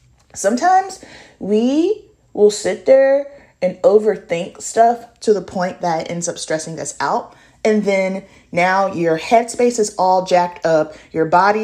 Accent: American